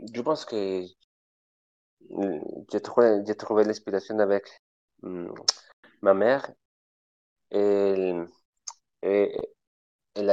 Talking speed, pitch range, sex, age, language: 75 wpm, 85-100 Hz, male, 30-49, French